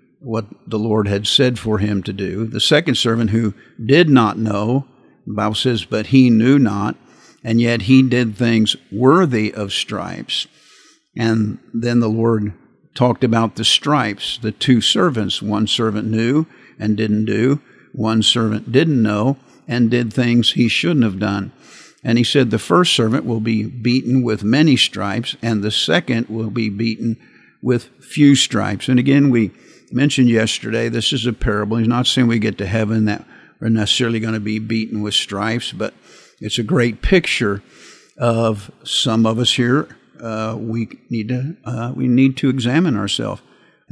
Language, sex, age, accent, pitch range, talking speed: English, male, 50-69, American, 110-125 Hz, 170 wpm